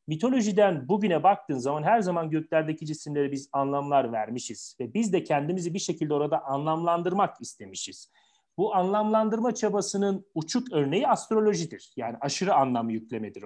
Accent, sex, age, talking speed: native, male, 40-59, 135 wpm